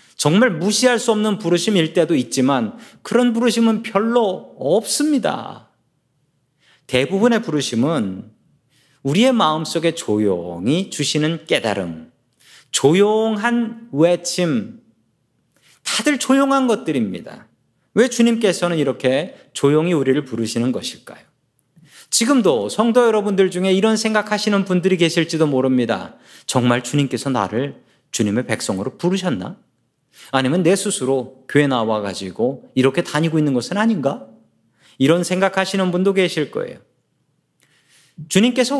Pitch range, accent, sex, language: 140-215 Hz, native, male, Korean